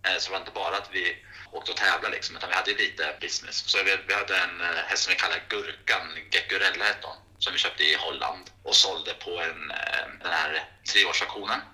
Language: English